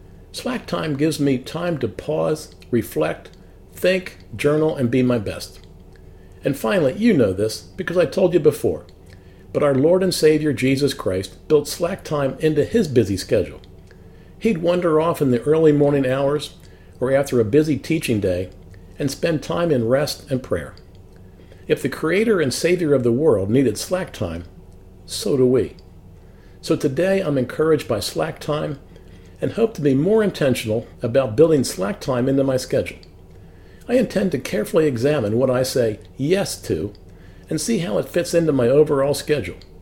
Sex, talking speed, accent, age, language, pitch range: male, 170 wpm, American, 50-69, English, 95-155 Hz